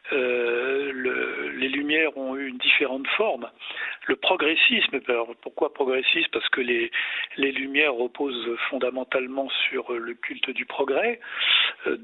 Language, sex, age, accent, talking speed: French, male, 50-69, French, 135 wpm